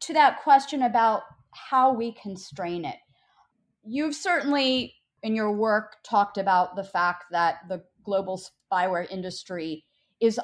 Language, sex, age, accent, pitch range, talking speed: English, female, 40-59, American, 180-225 Hz, 130 wpm